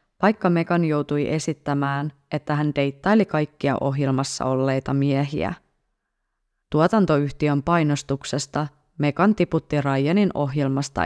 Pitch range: 140-165 Hz